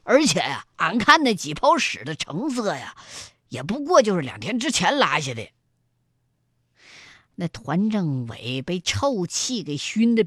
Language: Chinese